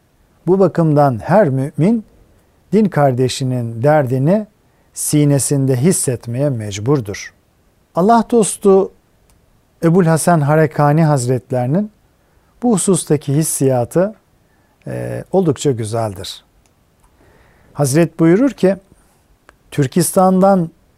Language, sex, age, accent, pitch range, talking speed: Turkish, male, 50-69, native, 125-170 Hz, 75 wpm